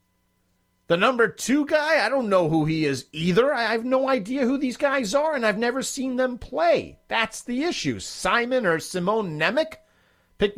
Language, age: English, 40-59